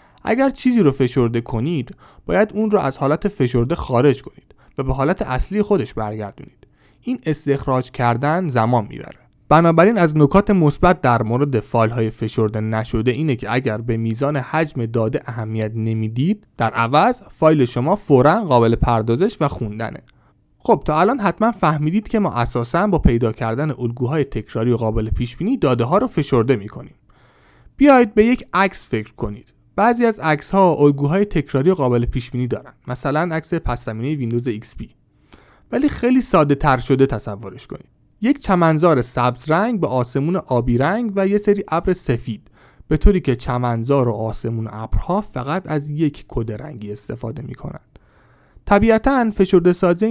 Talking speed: 155 wpm